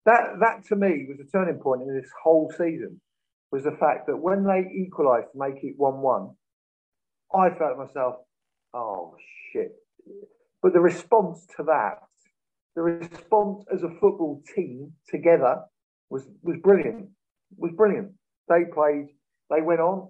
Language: English